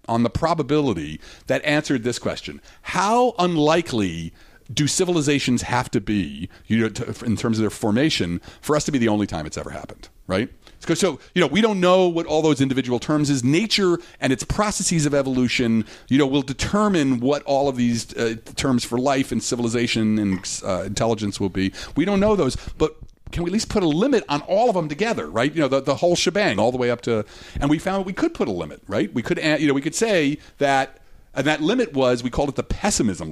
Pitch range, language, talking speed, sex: 110-160 Hz, English, 225 wpm, male